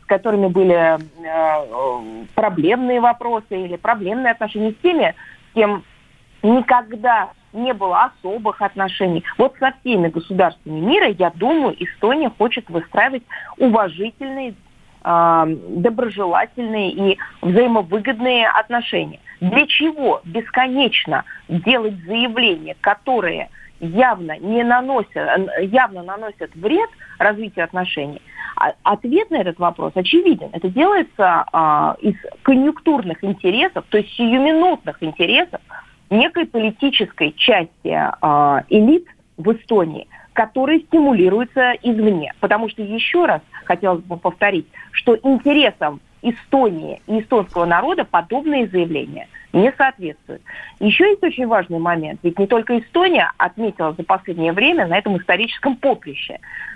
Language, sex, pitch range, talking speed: Russian, female, 180-255 Hz, 110 wpm